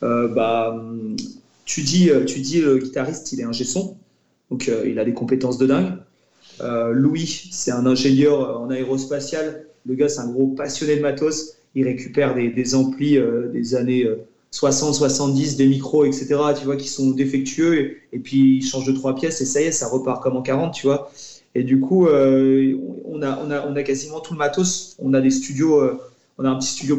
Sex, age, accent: male, 30-49, French